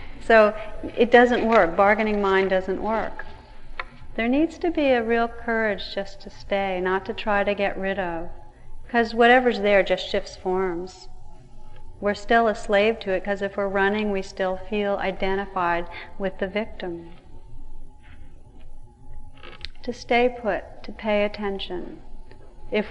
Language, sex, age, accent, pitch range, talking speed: English, female, 40-59, American, 190-225 Hz, 145 wpm